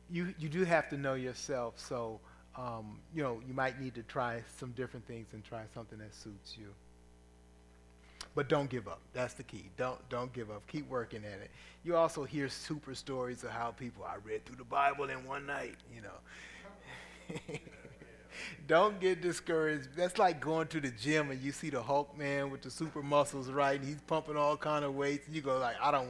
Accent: American